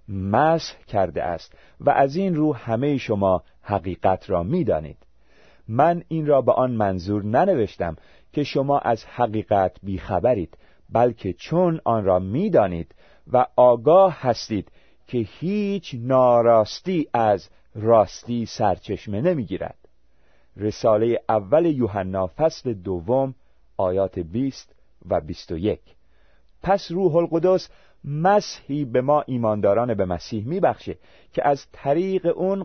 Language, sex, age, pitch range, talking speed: Persian, male, 40-59, 95-155 Hz, 115 wpm